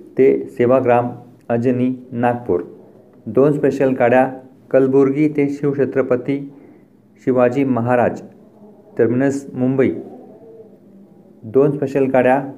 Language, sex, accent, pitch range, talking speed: Marathi, male, native, 115-135 Hz, 80 wpm